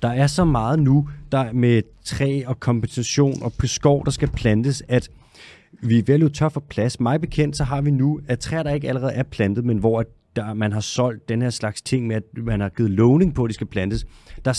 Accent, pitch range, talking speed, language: native, 110-135 Hz, 240 wpm, Danish